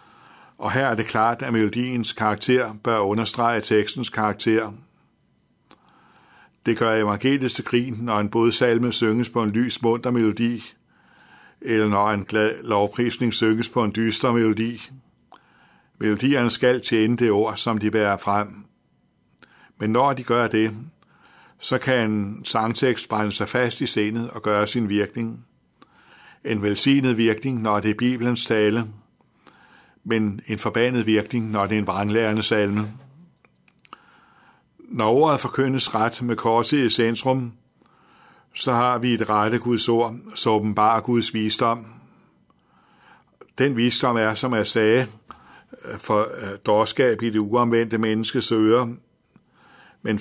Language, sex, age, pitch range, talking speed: Danish, male, 60-79, 110-120 Hz, 135 wpm